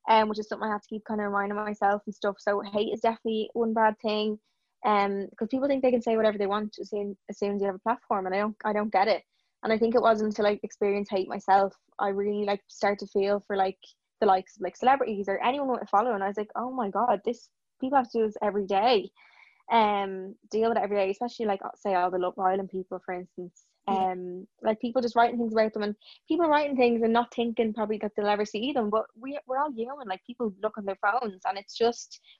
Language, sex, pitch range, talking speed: English, female, 200-230 Hz, 265 wpm